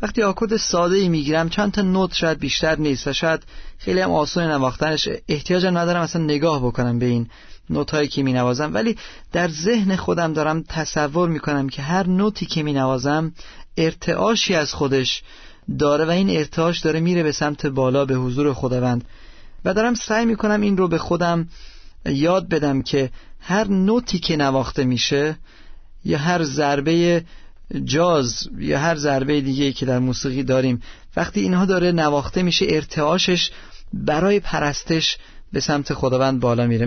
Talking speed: 160 wpm